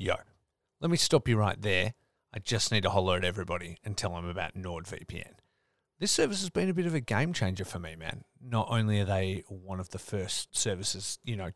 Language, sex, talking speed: English, male, 225 wpm